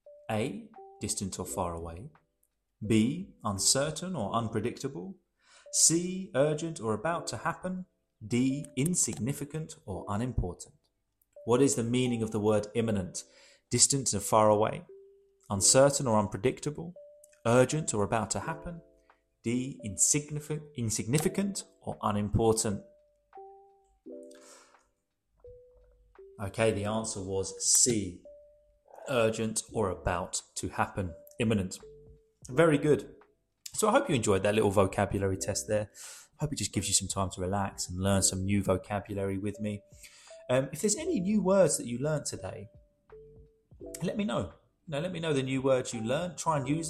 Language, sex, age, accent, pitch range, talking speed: English, male, 30-49, British, 105-165 Hz, 140 wpm